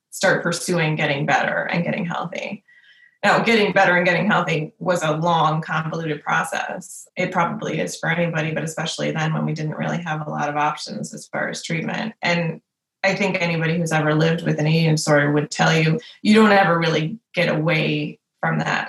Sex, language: female, English